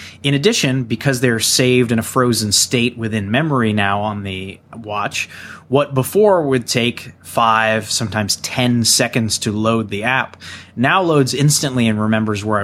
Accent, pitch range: American, 105-130 Hz